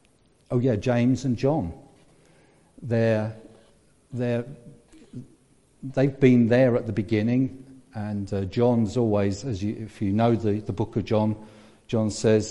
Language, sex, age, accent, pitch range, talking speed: English, male, 50-69, British, 100-125 Hz, 140 wpm